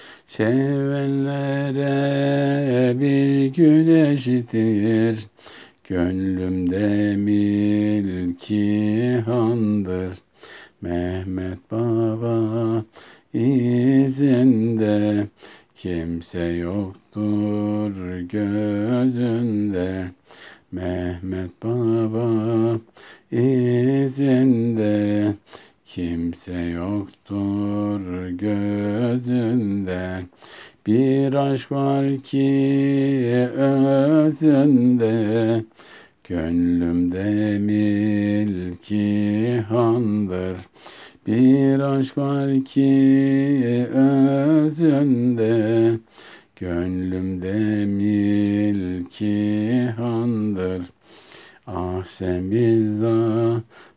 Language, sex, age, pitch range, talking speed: Turkish, male, 60-79, 100-130 Hz, 40 wpm